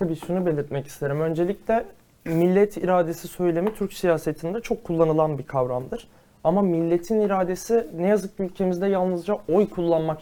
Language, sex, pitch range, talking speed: Turkish, male, 160-210 Hz, 140 wpm